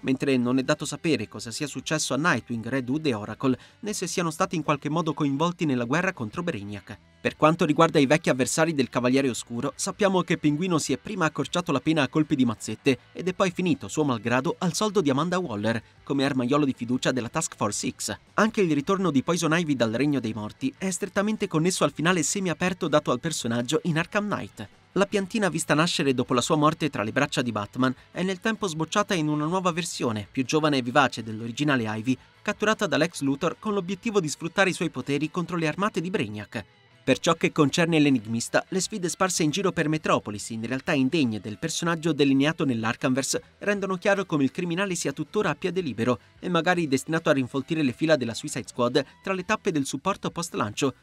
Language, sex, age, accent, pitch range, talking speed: Italian, male, 30-49, native, 130-175 Hz, 205 wpm